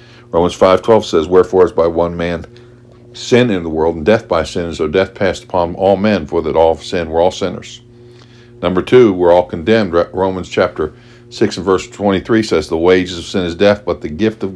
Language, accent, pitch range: English, American, 95-120 Hz